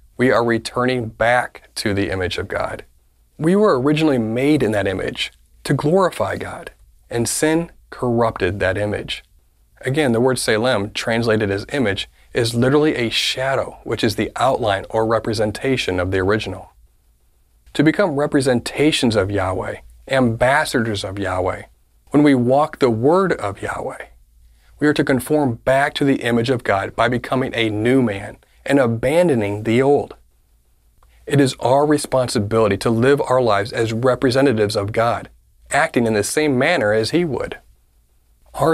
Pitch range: 100-130 Hz